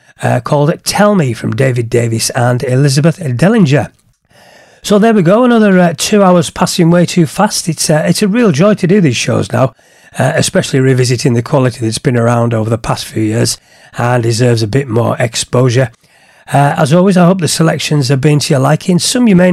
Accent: British